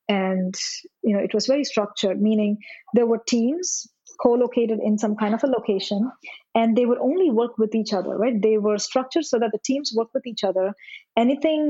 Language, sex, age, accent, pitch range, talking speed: English, female, 20-39, Indian, 200-250 Hz, 200 wpm